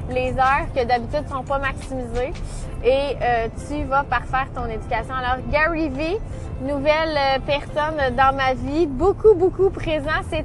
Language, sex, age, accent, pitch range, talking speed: French, female, 20-39, Canadian, 250-300 Hz, 150 wpm